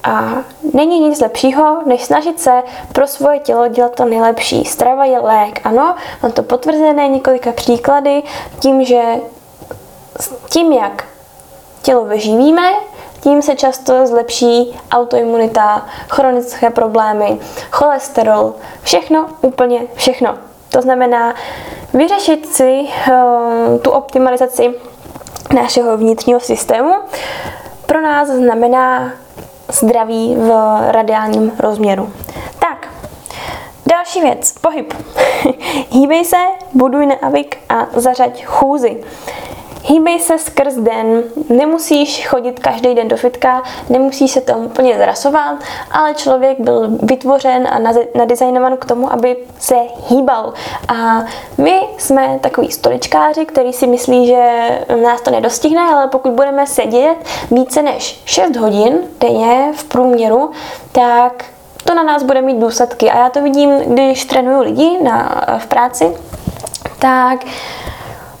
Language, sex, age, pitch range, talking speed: Czech, female, 10-29, 240-280 Hz, 115 wpm